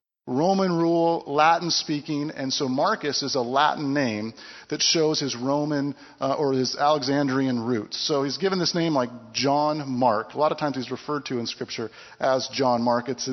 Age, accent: 40-59, American